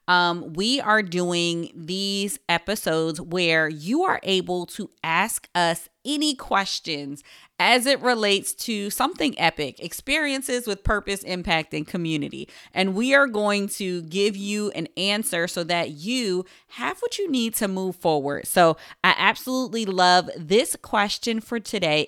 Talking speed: 145 wpm